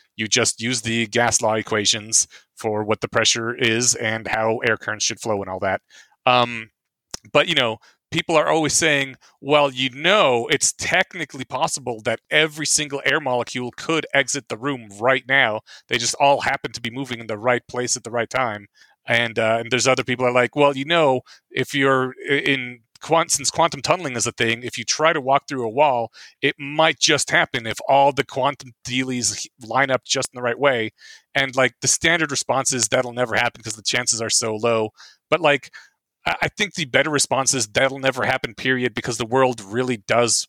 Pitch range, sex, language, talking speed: 115-140 Hz, male, English, 205 wpm